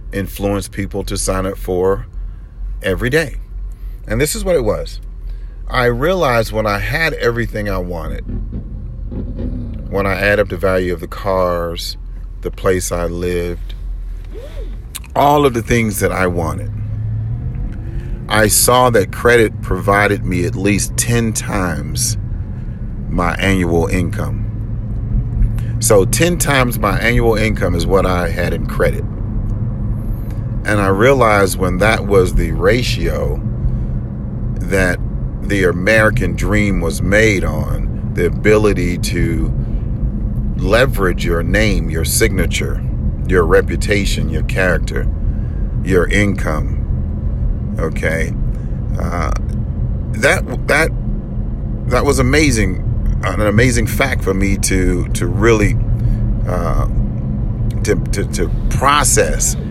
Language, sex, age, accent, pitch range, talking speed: English, male, 40-59, American, 95-115 Hz, 115 wpm